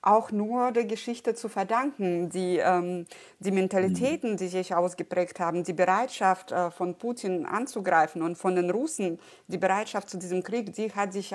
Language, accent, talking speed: German, German, 170 wpm